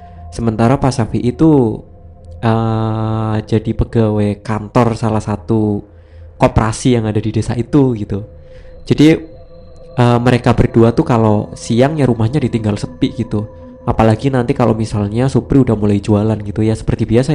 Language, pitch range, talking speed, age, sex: Indonesian, 105-135 Hz, 140 wpm, 20-39, male